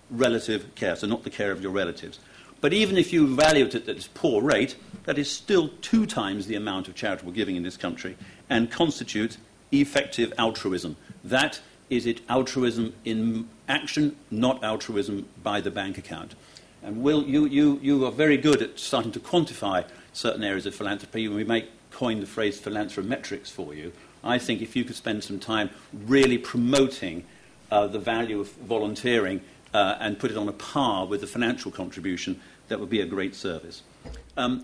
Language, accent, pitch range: English, British, 105-135 Hz